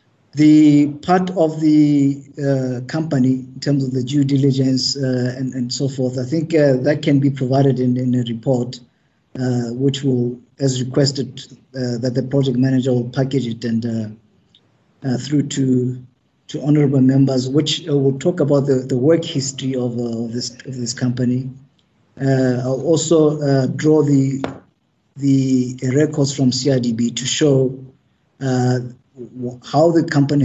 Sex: male